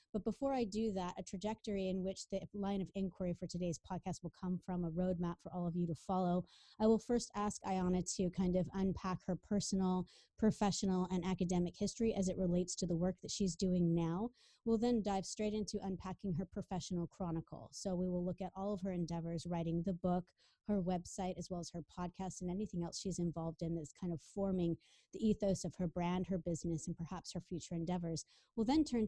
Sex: female